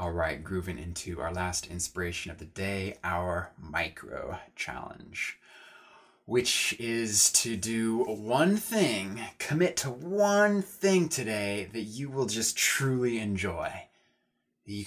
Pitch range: 90-115 Hz